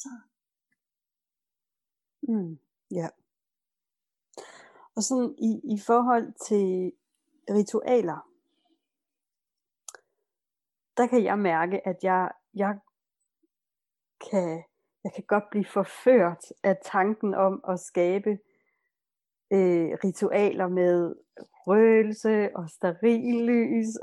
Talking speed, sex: 85 wpm, female